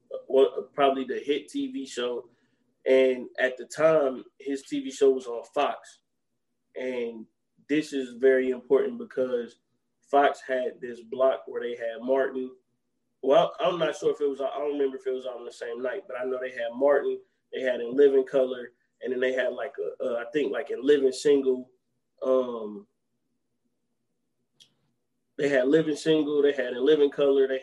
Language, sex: English, male